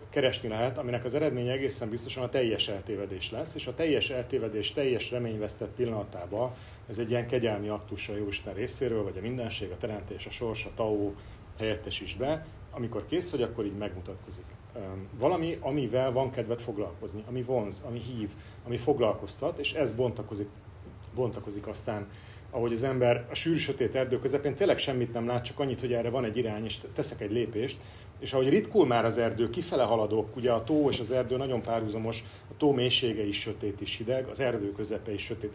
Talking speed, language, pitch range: 185 wpm, Hungarian, 100-125 Hz